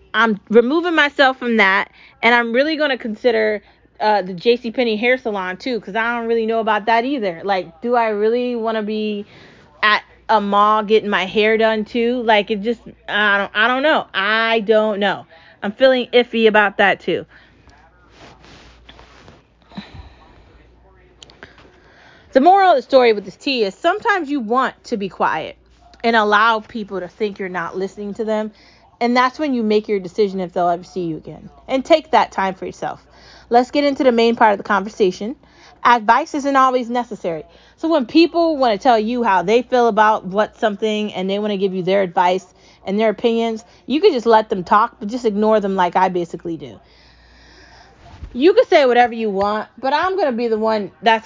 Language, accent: English, American